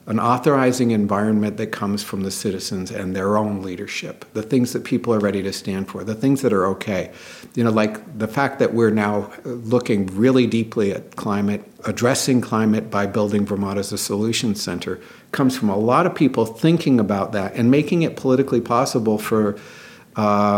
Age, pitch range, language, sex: 50-69, 105-125 Hz, English, male